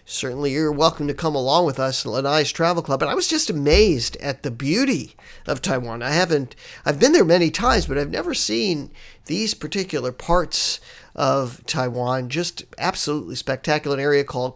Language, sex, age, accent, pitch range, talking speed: English, male, 50-69, American, 135-165 Hz, 180 wpm